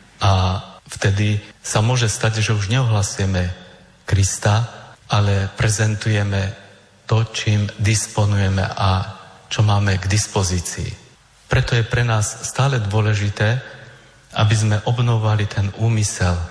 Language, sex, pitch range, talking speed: Slovak, male, 100-120 Hz, 110 wpm